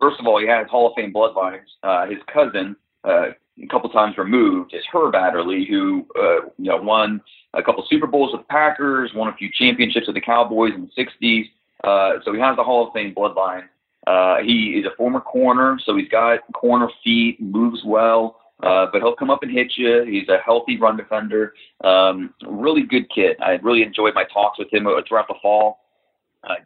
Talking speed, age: 205 wpm, 30-49